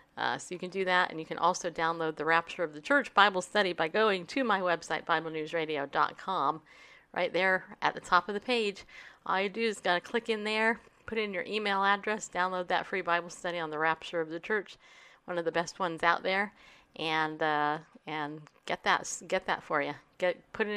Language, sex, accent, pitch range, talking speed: English, female, American, 170-210 Hz, 220 wpm